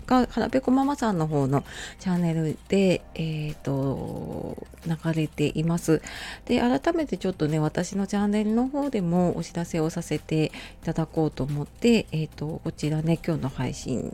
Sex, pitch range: female, 150-200 Hz